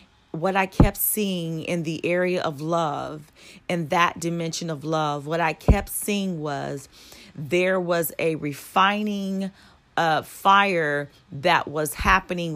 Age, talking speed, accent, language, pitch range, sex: 40-59, 135 wpm, American, English, 155-190 Hz, female